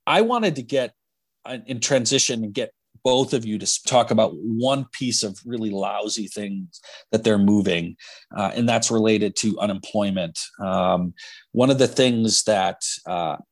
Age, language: 40-59, English